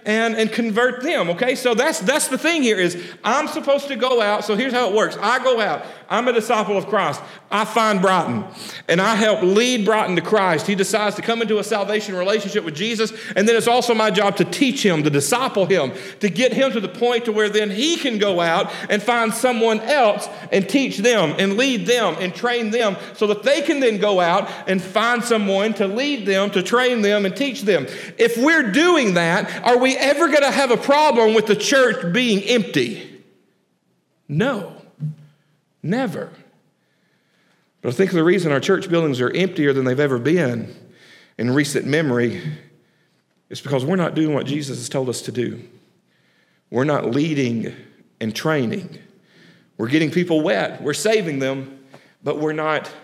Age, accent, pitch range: 40-59, American, 160-235 Hz